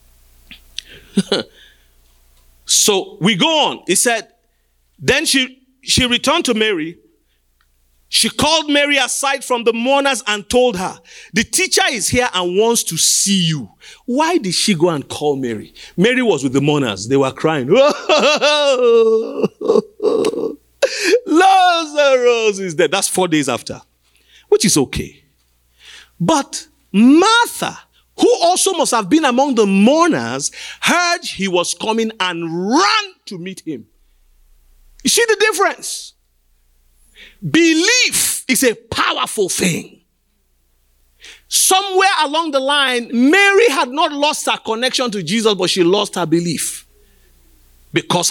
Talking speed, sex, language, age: 125 wpm, male, English, 40-59